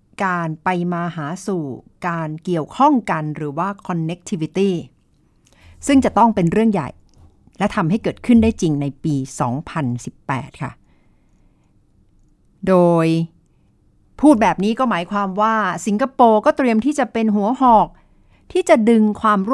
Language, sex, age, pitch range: Thai, female, 60-79, 170-225 Hz